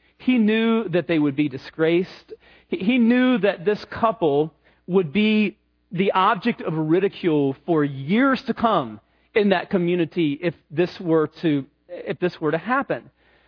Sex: male